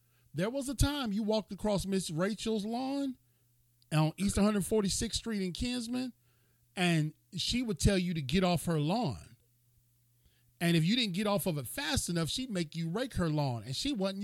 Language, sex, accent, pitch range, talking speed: English, male, American, 125-190 Hz, 190 wpm